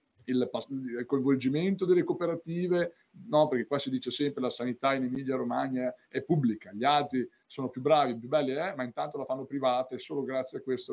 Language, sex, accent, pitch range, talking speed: Italian, male, native, 120-140 Hz, 185 wpm